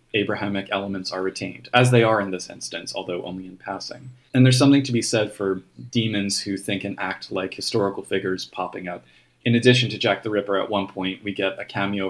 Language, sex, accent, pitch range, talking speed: English, male, American, 95-120 Hz, 220 wpm